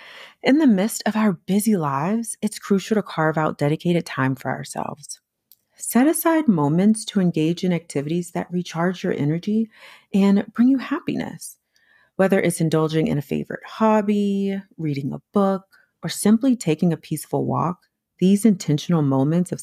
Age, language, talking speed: 30-49, English, 155 wpm